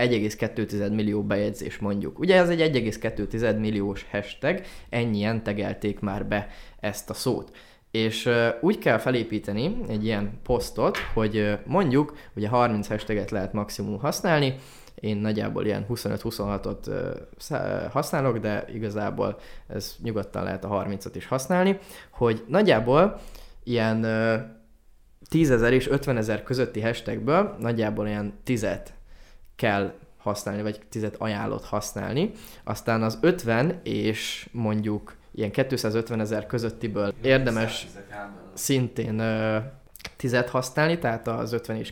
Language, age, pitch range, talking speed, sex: Hungarian, 20-39, 105-125 Hz, 125 wpm, male